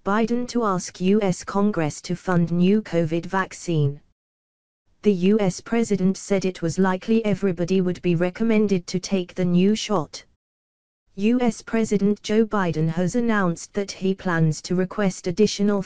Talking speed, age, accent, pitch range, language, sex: 145 wpm, 20-39, British, 170-210 Hz, English, female